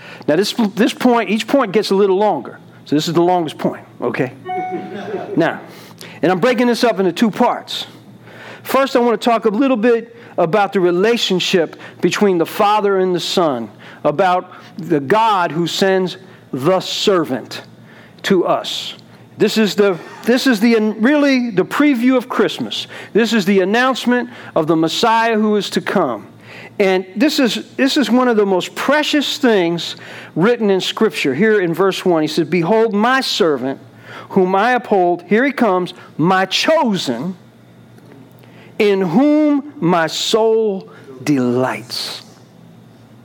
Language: English